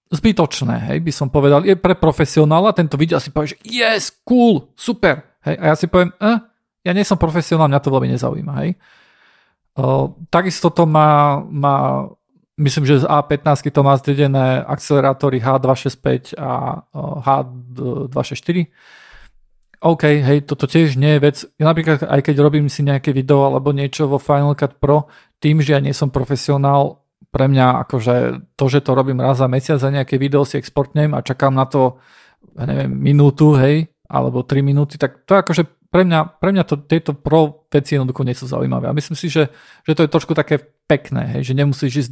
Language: Slovak